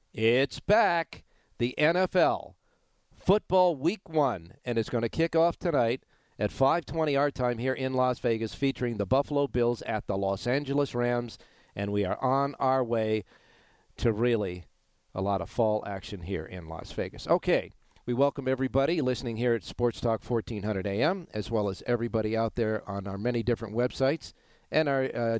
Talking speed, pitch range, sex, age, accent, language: 170 wpm, 110-140 Hz, male, 50-69, American, English